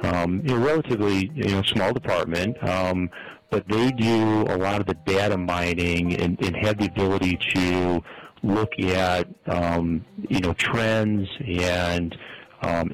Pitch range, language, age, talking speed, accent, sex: 90-105 Hz, English, 40-59, 155 wpm, American, male